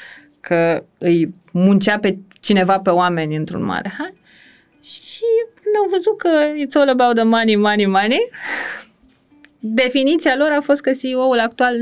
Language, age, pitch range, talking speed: Romanian, 20-39, 195-290 Hz, 145 wpm